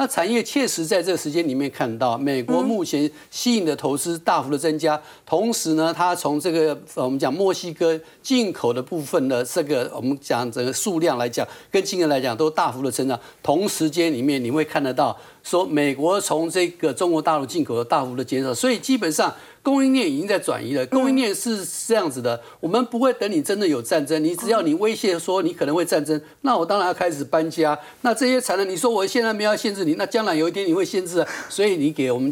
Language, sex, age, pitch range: Chinese, male, 50-69, 145-200 Hz